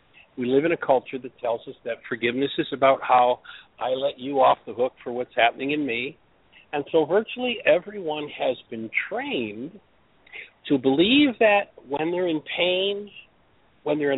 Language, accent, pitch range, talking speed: English, American, 130-200 Hz, 170 wpm